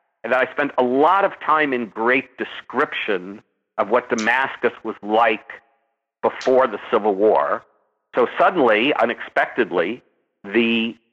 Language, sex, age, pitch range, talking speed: English, male, 60-79, 115-145 Hz, 125 wpm